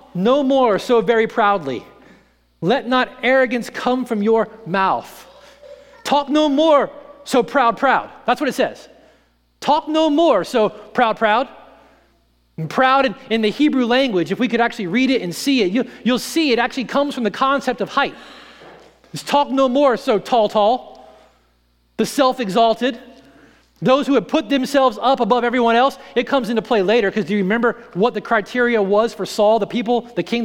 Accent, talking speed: American, 180 wpm